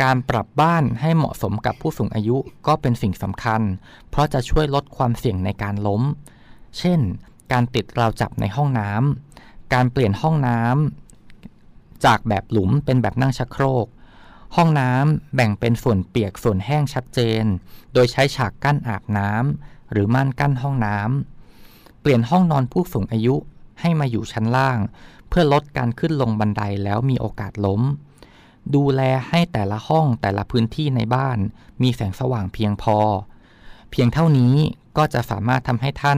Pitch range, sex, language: 110-140 Hz, male, Thai